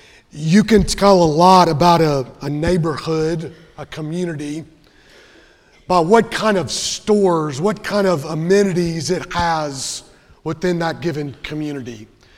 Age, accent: 30-49, American